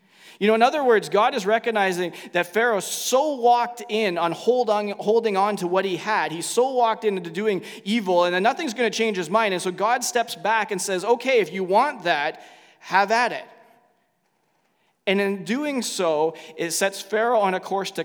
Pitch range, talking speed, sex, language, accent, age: 180-225 Hz, 205 wpm, male, English, American, 20-39